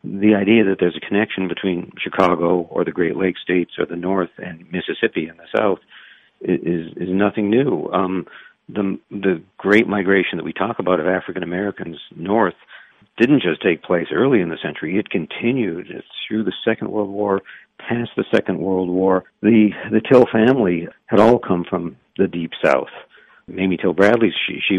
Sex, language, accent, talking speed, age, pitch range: male, English, American, 180 wpm, 50-69, 90-105 Hz